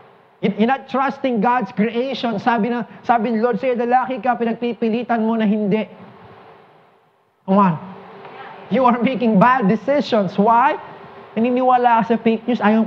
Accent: Filipino